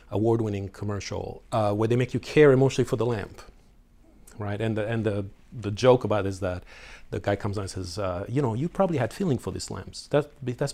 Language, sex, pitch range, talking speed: English, male, 100-125 Hz, 230 wpm